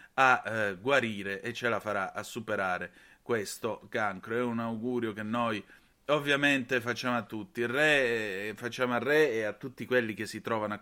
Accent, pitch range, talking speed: native, 105-130 Hz, 190 wpm